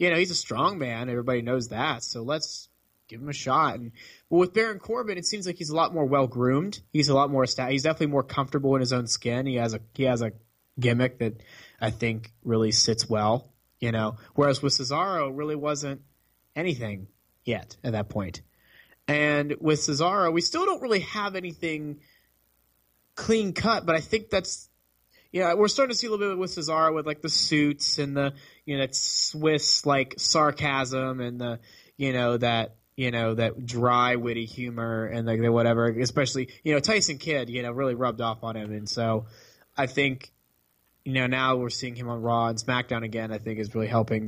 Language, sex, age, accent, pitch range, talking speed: English, male, 20-39, American, 115-150 Hz, 205 wpm